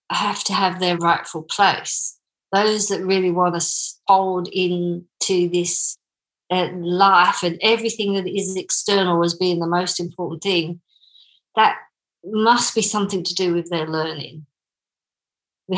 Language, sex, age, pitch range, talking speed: English, female, 50-69, 180-235 Hz, 145 wpm